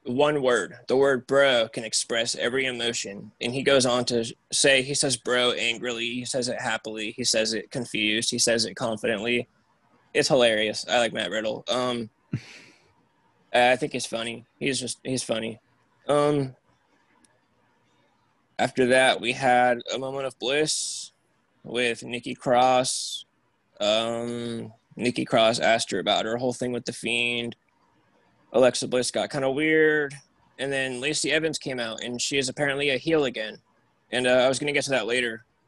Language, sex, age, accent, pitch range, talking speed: English, male, 20-39, American, 115-140 Hz, 165 wpm